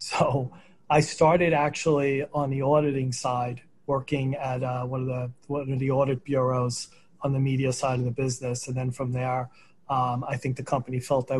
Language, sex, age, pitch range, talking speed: English, male, 40-59, 125-145 Hz, 195 wpm